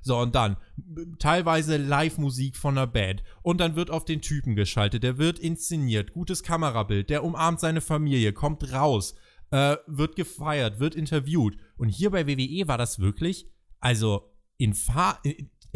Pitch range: 115-160 Hz